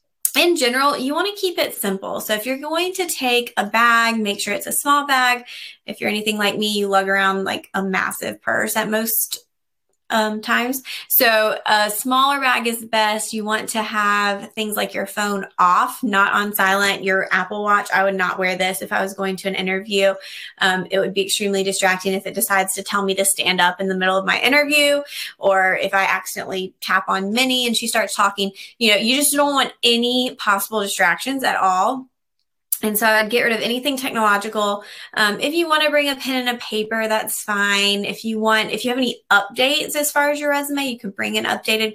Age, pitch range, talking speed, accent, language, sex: 20-39, 195-250 Hz, 220 wpm, American, English, female